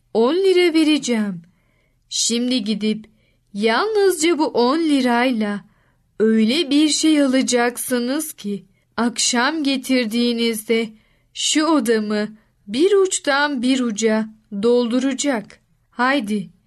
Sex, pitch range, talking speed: female, 215-295 Hz, 85 wpm